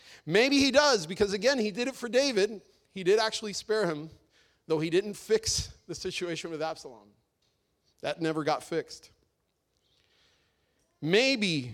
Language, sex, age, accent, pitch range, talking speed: English, male, 40-59, American, 155-210 Hz, 145 wpm